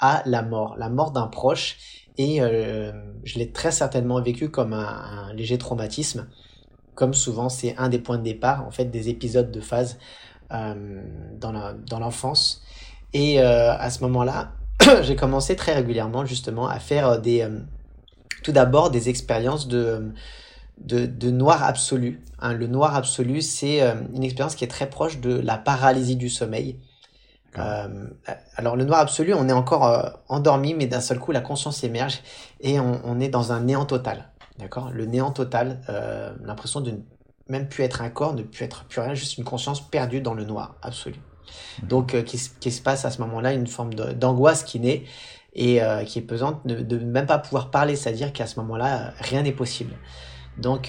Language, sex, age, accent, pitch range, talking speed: French, male, 20-39, French, 115-135 Hz, 190 wpm